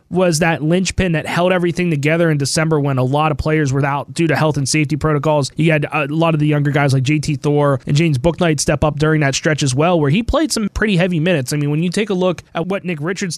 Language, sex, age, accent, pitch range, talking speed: English, male, 20-39, American, 150-175 Hz, 275 wpm